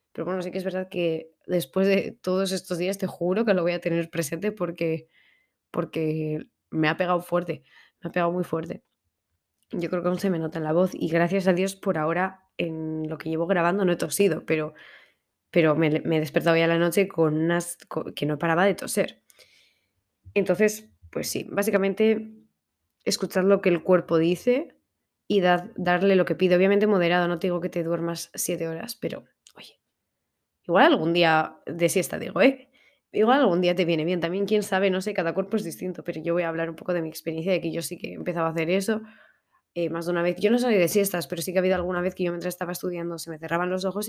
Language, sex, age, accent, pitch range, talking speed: Spanish, female, 20-39, Spanish, 165-190 Hz, 225 wpm